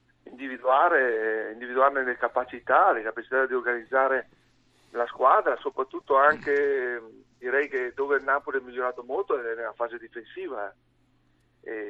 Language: Italian